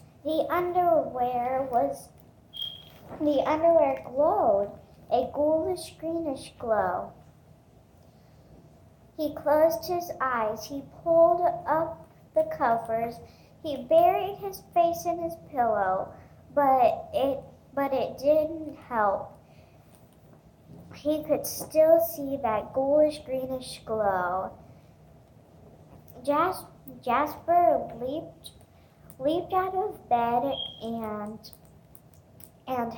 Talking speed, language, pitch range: 85 wpm, English, 230-315 Hz